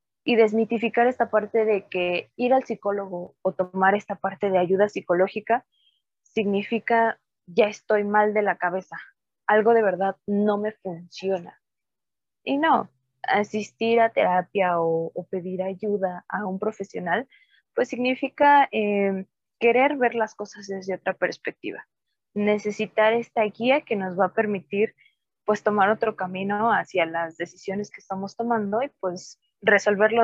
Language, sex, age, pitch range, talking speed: Spanish, female, 20-39, 185-225 Hz, 145 wpm